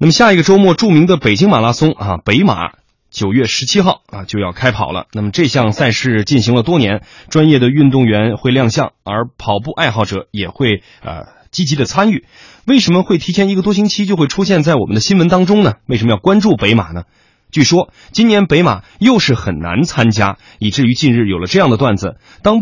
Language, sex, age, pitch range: Chinese, male, 20-39, 105-170 Hz